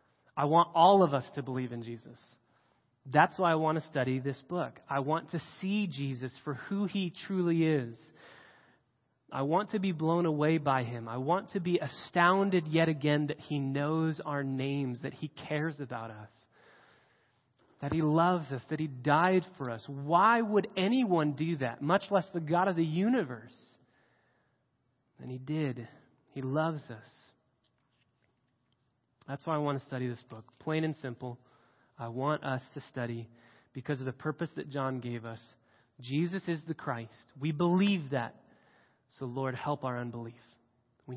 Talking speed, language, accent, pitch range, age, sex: 170 wpm, English, American, 130-170 Hz, 30-49, male